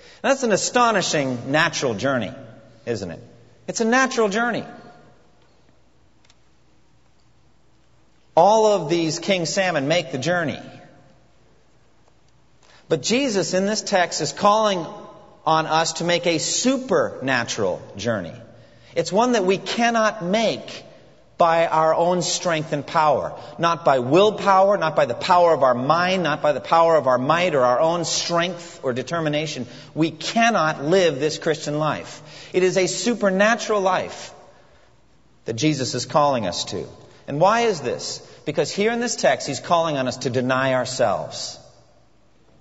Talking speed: 140 wpm